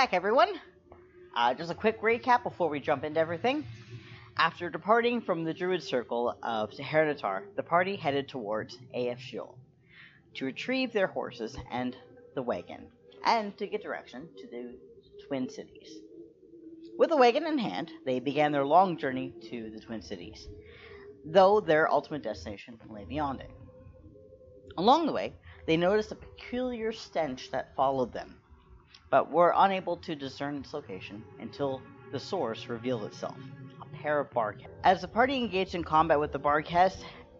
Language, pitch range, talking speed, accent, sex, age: English, 120-175 Hz, 150 wpm, American, female, 40-59